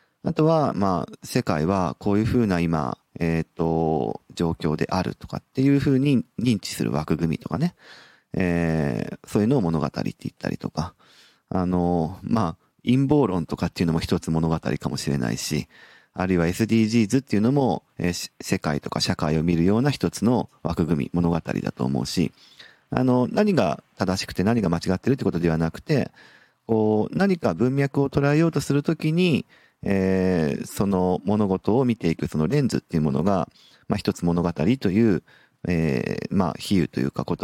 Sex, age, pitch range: male, 40-59, 85-120 Hz